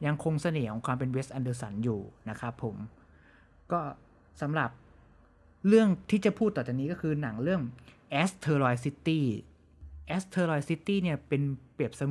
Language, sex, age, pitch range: Thai, male, 20-39, 120-160 Hz